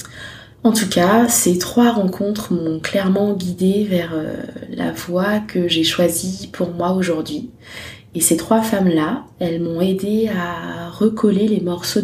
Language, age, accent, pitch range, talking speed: French, 20-39, French, 160-190 Hz, 145 wpm